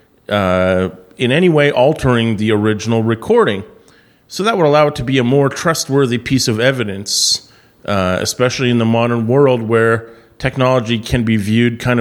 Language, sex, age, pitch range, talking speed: English, male, 40-59, 110-135 Hz, 165 wpm